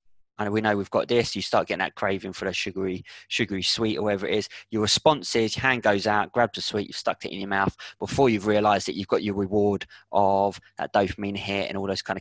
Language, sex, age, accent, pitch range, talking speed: English, male, 20-39, British, 100-115 Hz, 255 wpm